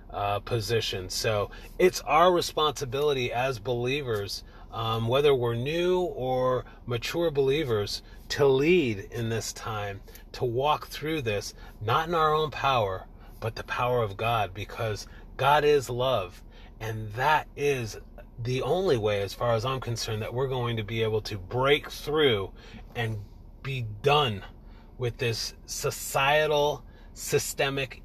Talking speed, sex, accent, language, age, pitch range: 135 wpm, male, American, English, 30-49, 105-135 Hz